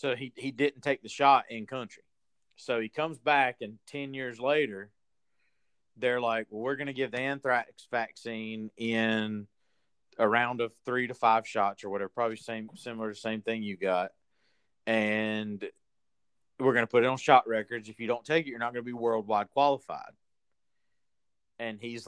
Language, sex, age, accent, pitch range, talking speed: English, male, 40-59, American, 105-125 Hz, 190 wpm